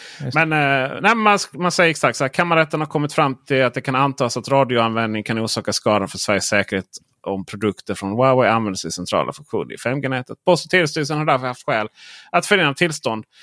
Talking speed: 195 wpm